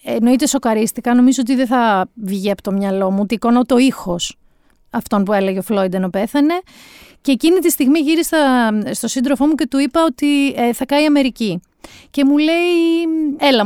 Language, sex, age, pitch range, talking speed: Greek, female, 30-49, 215-290 Hz, 185 wpm